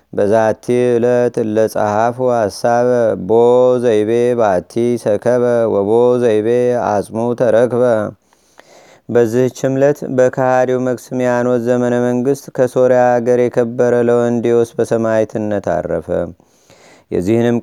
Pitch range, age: 115-125 Hz, 30-49